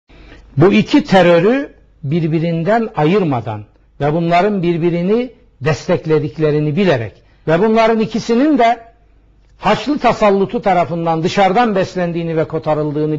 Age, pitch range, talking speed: 60-79, 145-220 Hz, 95 wpm